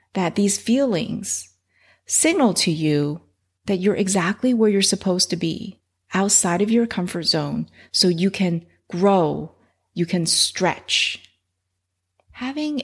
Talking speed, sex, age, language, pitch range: 125 wpm, female, 30-49, English, 155-205 Hz